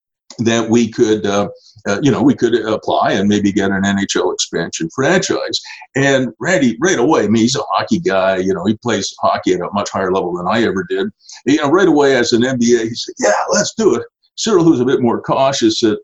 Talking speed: 230 wpm